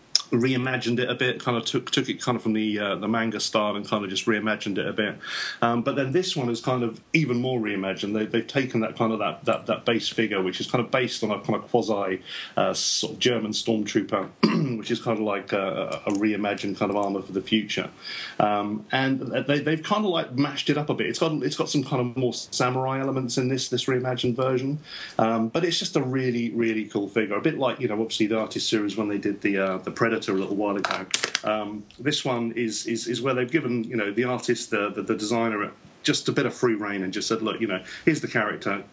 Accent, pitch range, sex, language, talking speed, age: British, 110-130 Hz, male, English, 235 wpm, 40-59